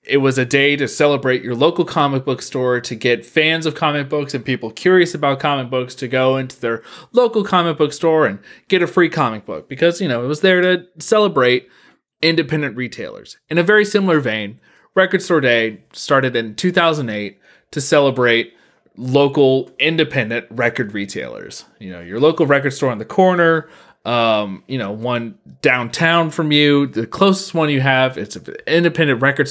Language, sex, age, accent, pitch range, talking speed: English, male, 30-49, American, 115-155 Hz, 180 wpm